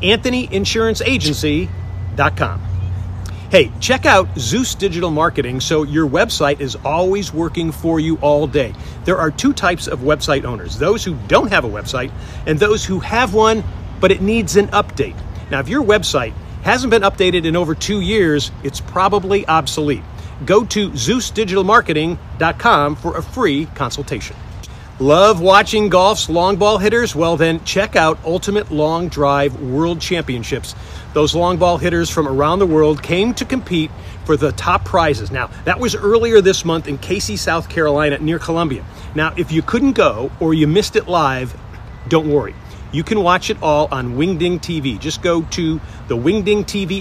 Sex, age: male, 50-69